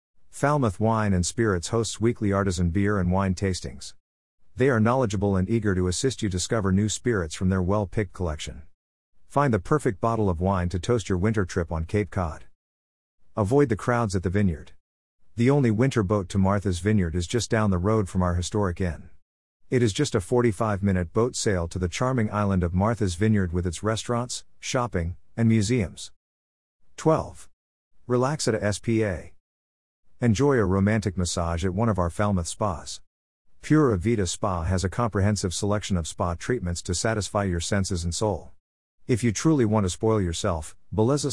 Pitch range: 90-115 Hz